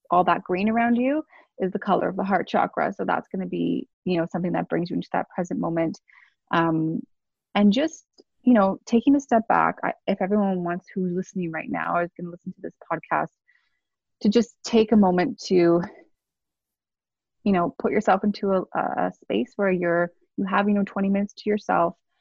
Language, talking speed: English, 205 wpm